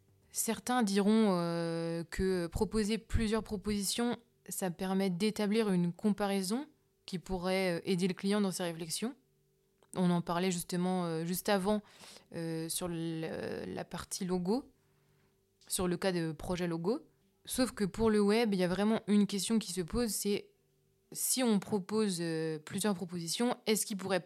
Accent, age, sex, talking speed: French, 20-39, female, 145 wpm